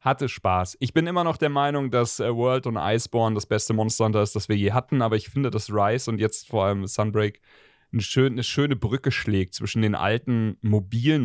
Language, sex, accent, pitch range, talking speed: German, male, German, 105-125 Hz, 220 wpm